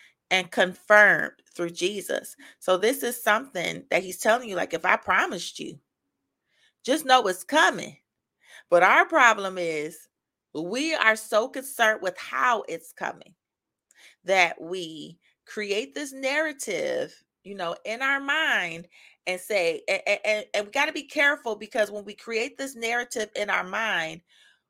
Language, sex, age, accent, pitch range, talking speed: English, female, 30-49, American, 200-275 Hz, 145 wpm